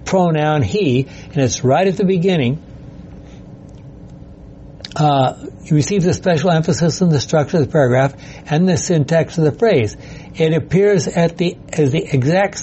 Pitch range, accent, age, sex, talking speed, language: 145-180 Hz, American, 60-79, male, 155 wpm, English